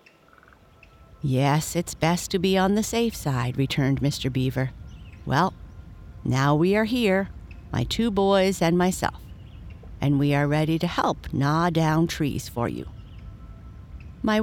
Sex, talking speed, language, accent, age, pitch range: female, 140 wpm, English, American, 50-69, 140-190 Hz